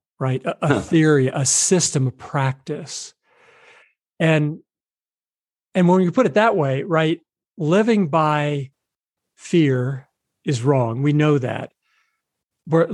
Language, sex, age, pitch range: English, male, 50-69, 130-170 Hz